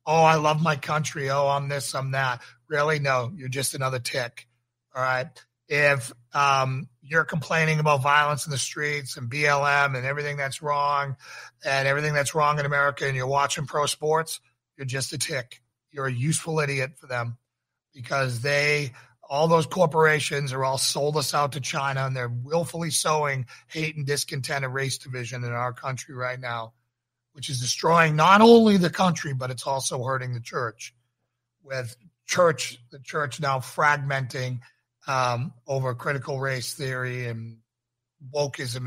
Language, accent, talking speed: English, American, 165 wpm